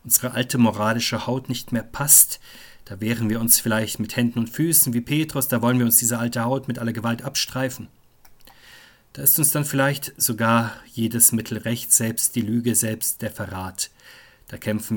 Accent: German